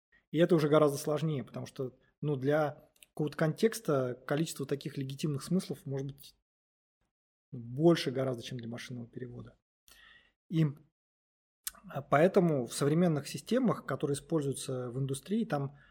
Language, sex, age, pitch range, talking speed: Russian, male, 20-39, 130-155 Hz, 125 wpm